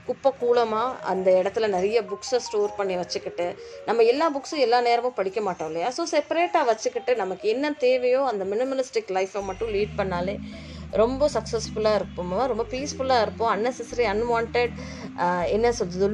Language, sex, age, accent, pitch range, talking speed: Tamil, female, 20-39, native, 190-240 Hz, 140 wpm